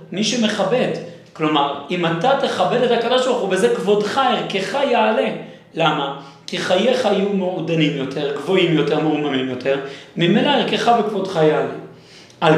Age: 40-59